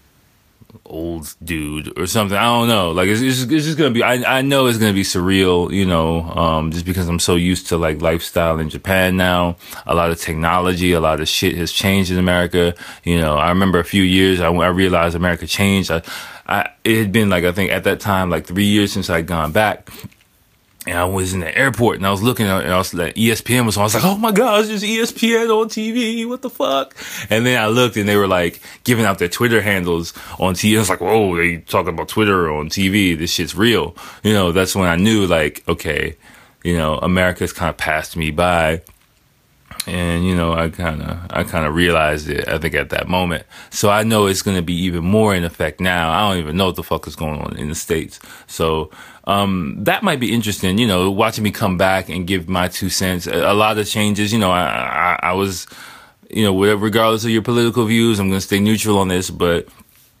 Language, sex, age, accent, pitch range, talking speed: English, male, 20-39, American, 85-110 Hz, 230 wpm